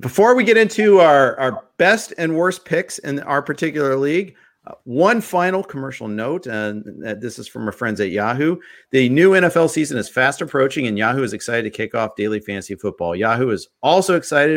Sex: male